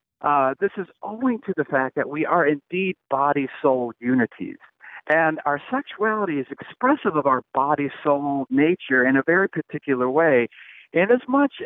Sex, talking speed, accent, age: male, 155 wpm, American, 50-69